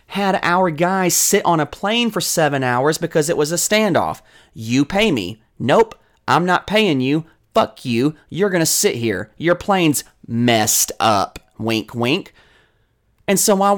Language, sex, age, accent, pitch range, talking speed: English, male, 30-49, American, 140-195 Hz, 170 wpm